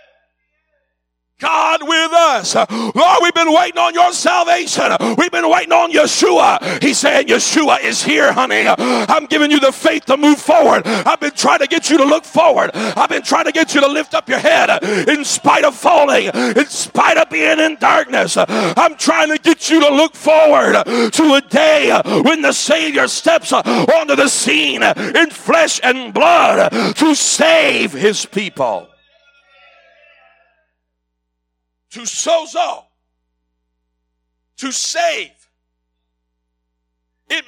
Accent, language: American, English